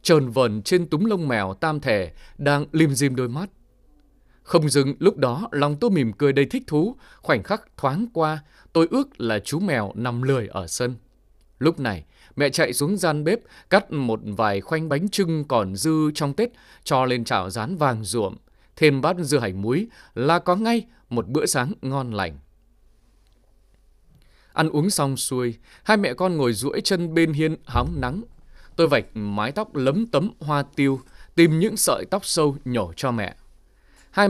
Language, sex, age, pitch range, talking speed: Vietnamese, male, 20-39, 110-165 Hz, 180 wpm